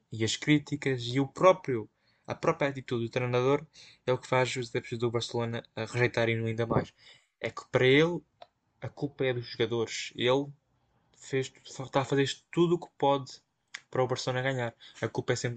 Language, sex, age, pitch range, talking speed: Portuguese, male, 10-29, 105-125 Hz, 190 wpm